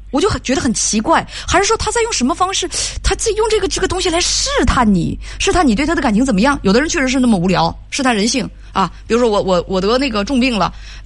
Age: 20-39